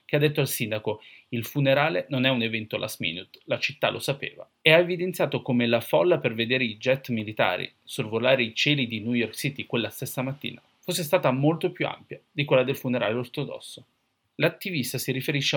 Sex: male